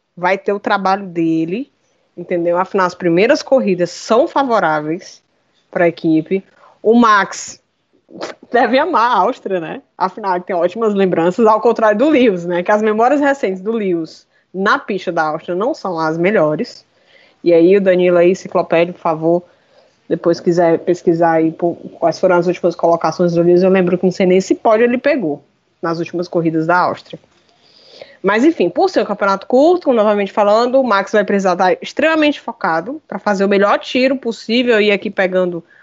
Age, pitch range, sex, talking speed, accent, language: 20-39, 175-245 Hz, female, 175 wpm, Brazilian, Portuguese